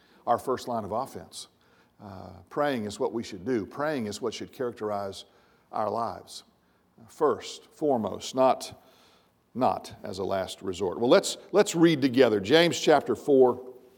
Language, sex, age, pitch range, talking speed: English, male, 50-69, 105-145 Hz, 150 wpm